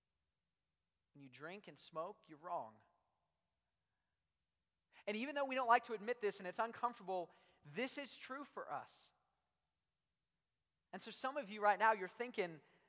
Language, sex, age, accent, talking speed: English, male, 30-49, American, 155 wpm